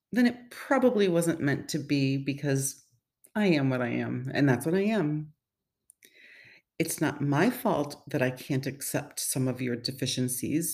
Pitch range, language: 145-245 Hz, English